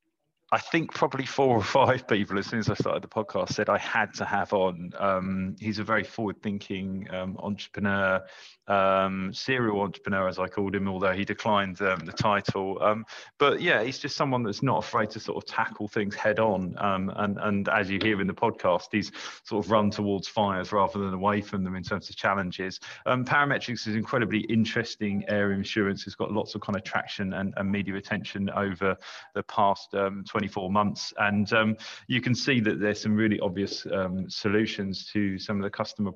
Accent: British